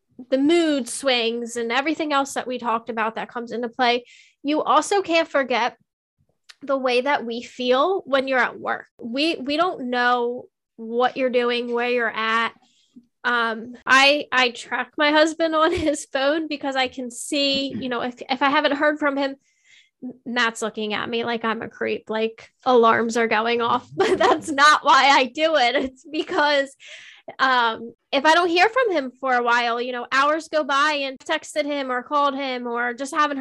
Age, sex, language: 10-29, female, English